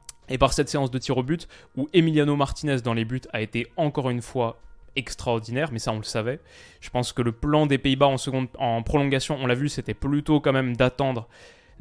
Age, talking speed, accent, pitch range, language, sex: 20-39, 220 wpm, French, 120-145 Hz, French, male